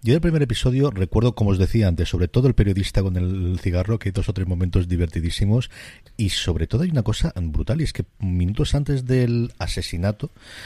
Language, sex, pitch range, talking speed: Spanish, male, 95-125 Hz, 215 wpm